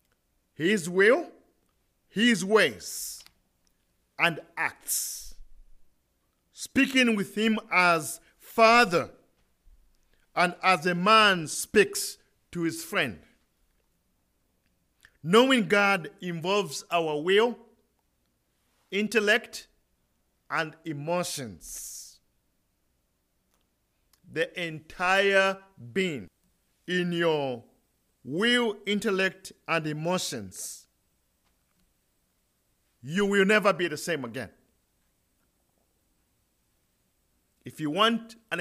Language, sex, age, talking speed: English, male, 50-69, 75 wpm